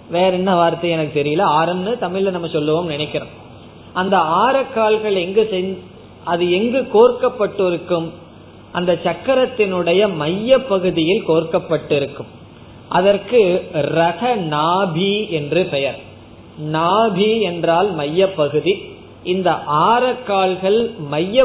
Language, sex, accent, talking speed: Tamil, male, native, 90 wpm